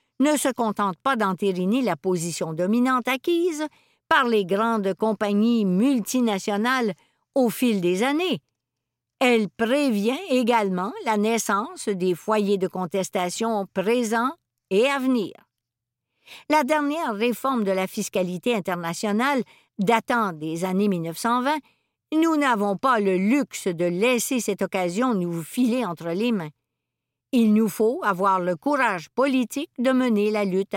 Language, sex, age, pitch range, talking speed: French, female, 60-79, 180-245 Hz, 130 wpm